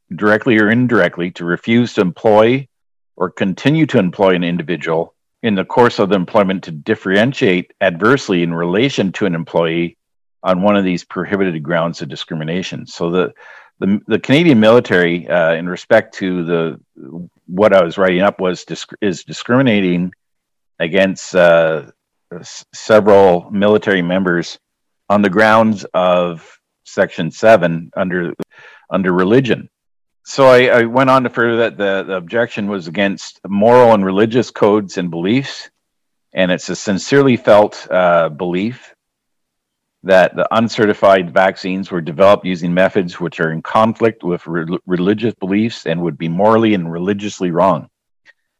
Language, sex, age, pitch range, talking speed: English, male, 50-69, 85-110 Hz, 145 wpm